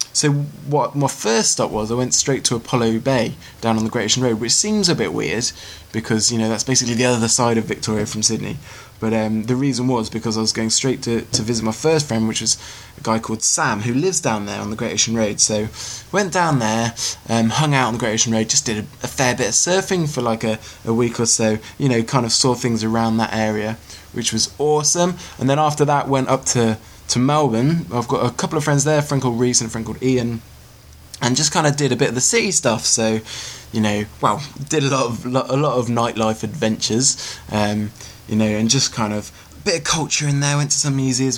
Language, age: English, 20-39